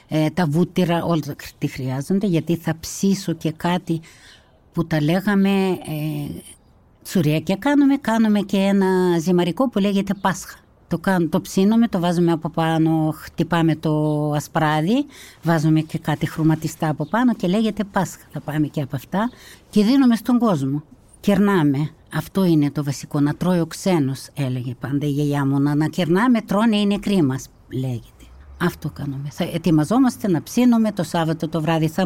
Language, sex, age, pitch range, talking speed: Greek, female, 60-79, 155-195 Hz, 150 wpm